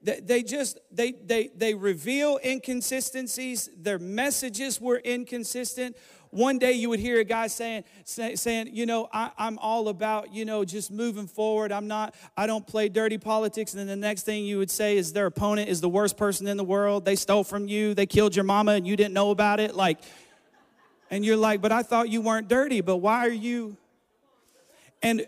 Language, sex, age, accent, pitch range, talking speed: English, male, 40-59, American, 205-245 Hz, 200 wpm